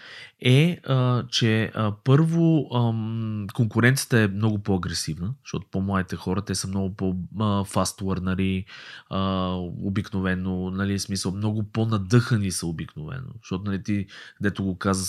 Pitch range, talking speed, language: 95-120 Hz, 110 wpm, Bulgarian